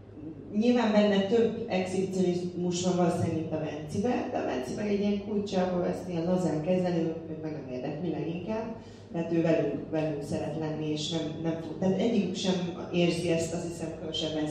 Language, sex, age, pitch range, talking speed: Hungarian, female, 30-49, 150-185 Hz, 175 wpm